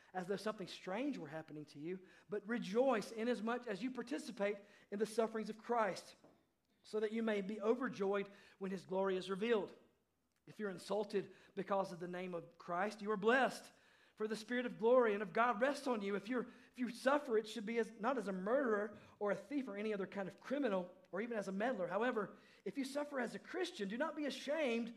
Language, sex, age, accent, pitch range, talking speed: English, male, 40-59, American, 195-235 Hz, 220 wpm